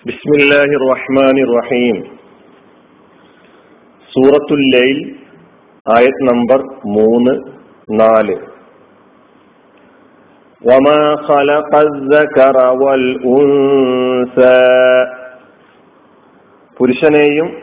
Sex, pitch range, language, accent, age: male, 125-145 Hz, Malayalam, native, 40-59